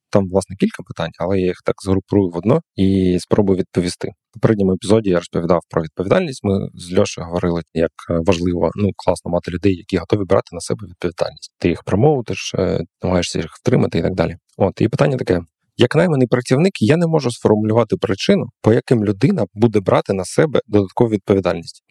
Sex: male